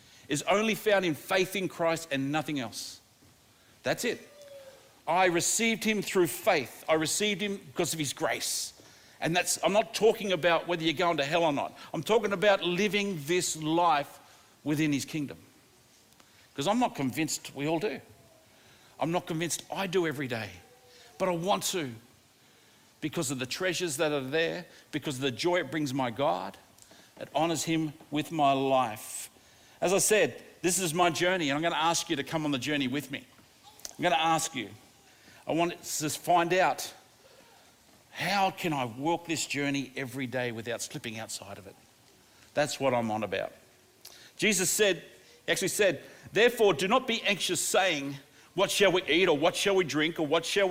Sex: male